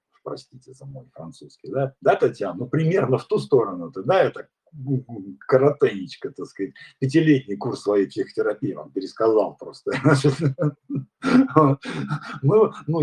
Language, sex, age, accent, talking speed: Russian, male, 40-59, native, 115 wpm